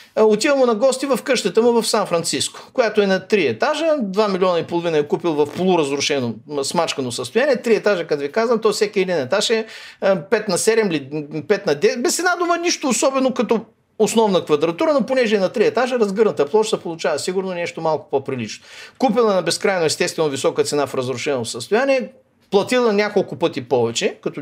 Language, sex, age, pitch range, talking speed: Bulgarian, male, 50-69, 165-250 Hz, 185 wpm